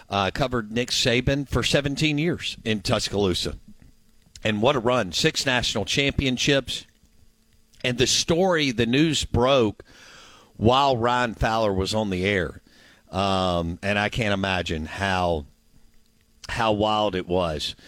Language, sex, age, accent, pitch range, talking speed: English, male, 50-69, American, 100-125 Hz, 130 wpm